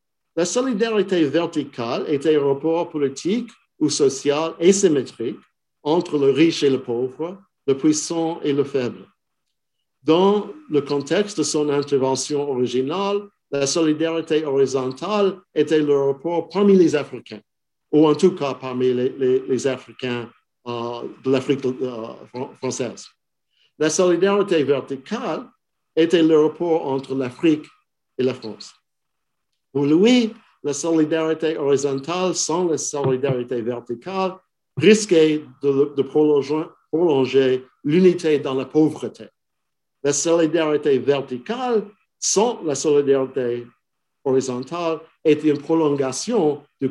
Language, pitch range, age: French, 135-165 Hz, 50-69